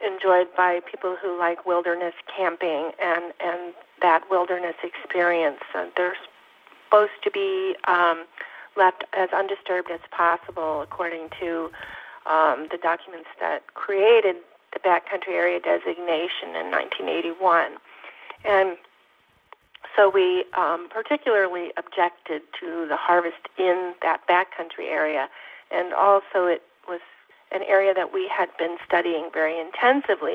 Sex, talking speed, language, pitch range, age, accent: female, 120 wpm, English, 170-195 Hz, 50-69, American